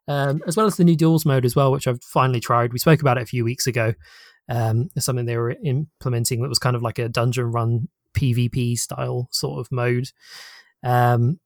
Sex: male